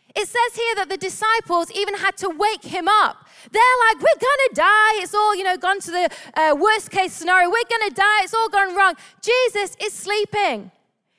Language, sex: English, female